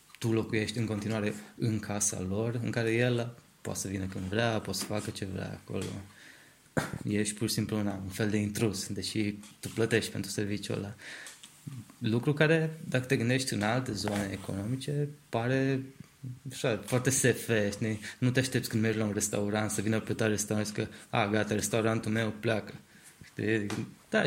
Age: 20-39